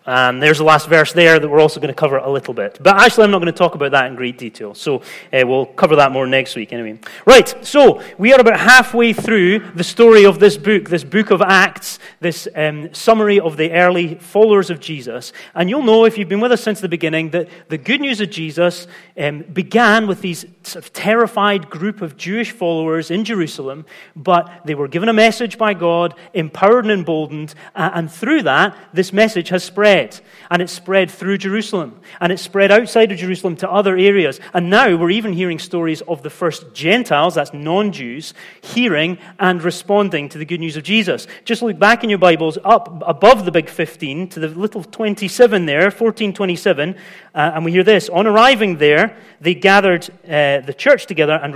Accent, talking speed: British, 200 wpm